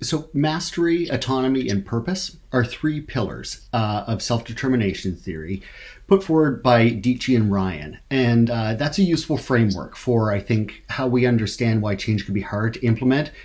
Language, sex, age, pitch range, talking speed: English, male, 40-59, 105-135 Hz, 165 wpm